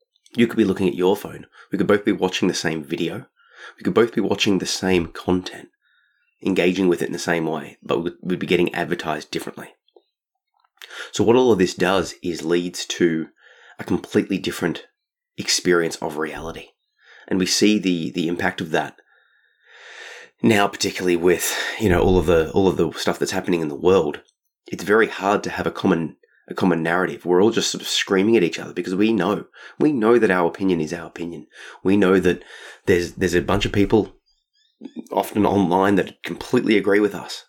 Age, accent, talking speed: 30-49, Australian, 195 wpm